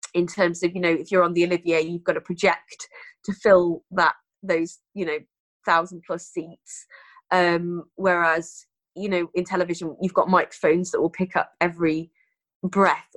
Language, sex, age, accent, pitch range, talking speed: English, female, 20-39, British, 175-220 Hz, 175 wpm